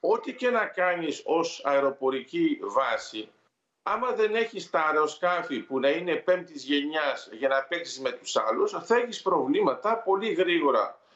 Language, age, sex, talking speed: Greek, 50-69, male, 150 wpm